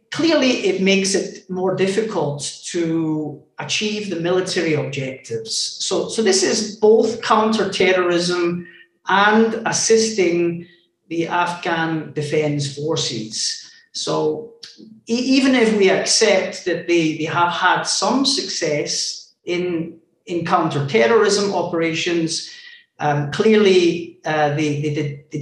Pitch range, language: 155-205 Hz, Thai